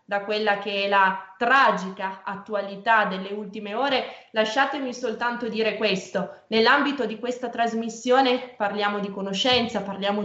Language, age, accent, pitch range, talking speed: Italian, 20-39, native, 195-230 Hz, 130 wpm